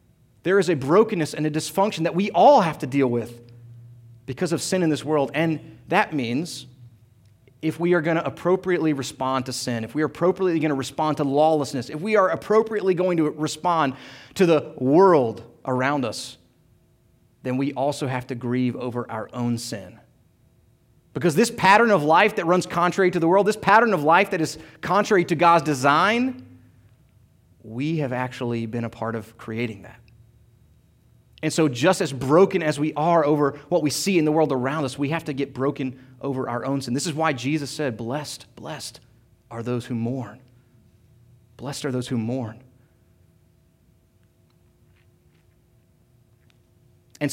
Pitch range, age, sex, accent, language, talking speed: 120-160 Hz, 30-49, male, American, English, 170 wpm